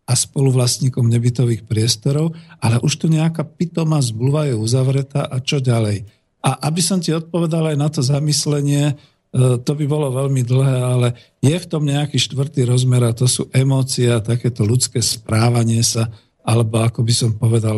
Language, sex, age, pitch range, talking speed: Slovak, male, 50-69, 125-150 Hz, 165 wpm